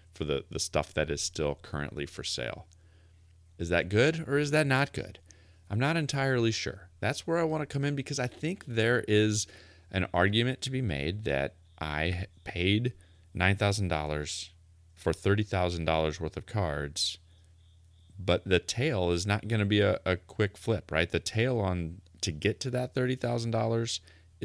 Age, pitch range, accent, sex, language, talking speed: 30-49, 85-105 Hz, American, male, English, 170 wpm